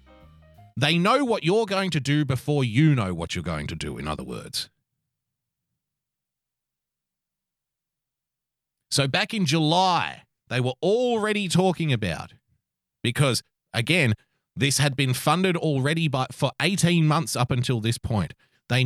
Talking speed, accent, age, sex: 135 wpm, Australian, 30-49, male